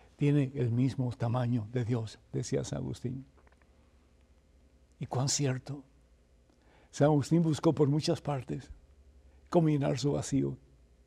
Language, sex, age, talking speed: Spanish, male, 60-79, 115 wpm